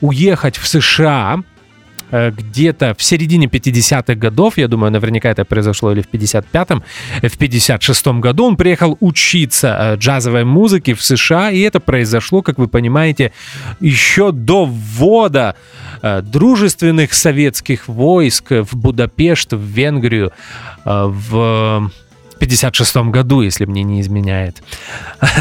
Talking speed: 115 wpm